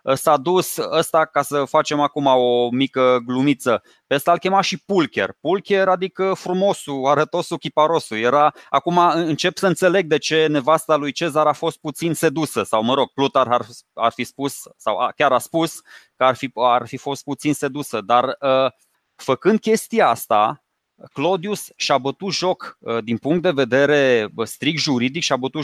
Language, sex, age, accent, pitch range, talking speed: Romanian, male, 20-39, native, 135-180 Hz, 170 wpm